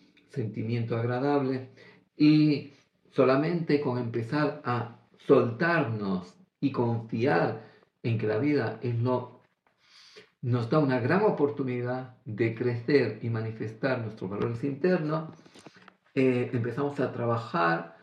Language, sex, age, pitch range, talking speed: Greek, male, 50-69, 120-150 Hz, 100 wpm